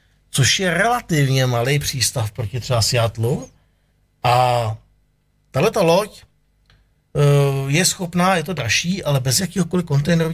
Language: Czech